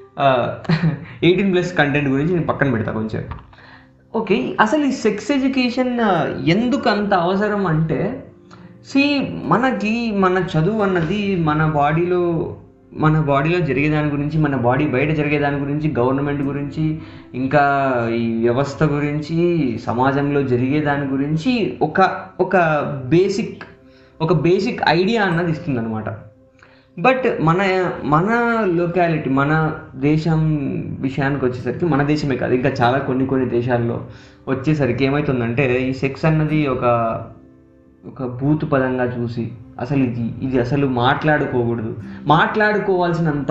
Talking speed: 115 wpm